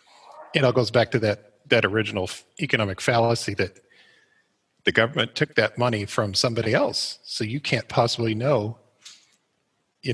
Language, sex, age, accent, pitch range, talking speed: English, male, 40-59, American, 105-130 Hz, 150 wpm